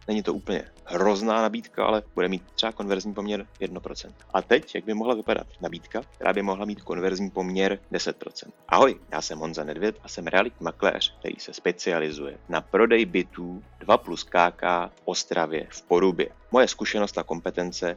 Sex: male